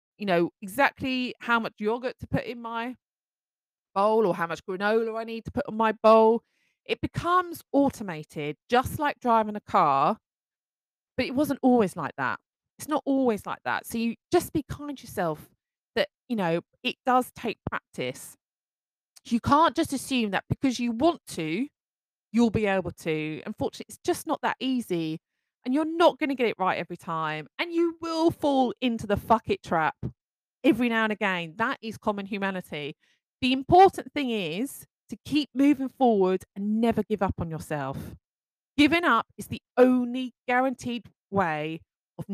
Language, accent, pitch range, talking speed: English, British, 185-265 Hz, 175 wpm